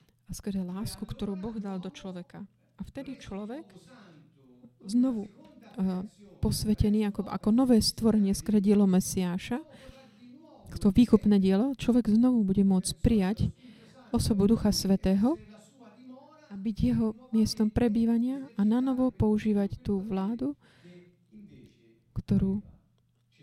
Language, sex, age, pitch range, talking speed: Slovak, female, 30-49, 190-230 Hz, 110 wpm